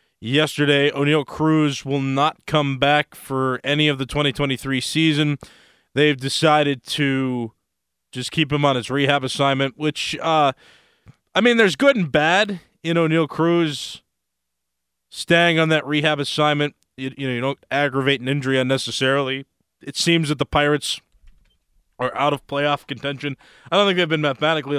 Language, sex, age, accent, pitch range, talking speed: English, male, 20-39, American, 115-155 Hz, 155 wpm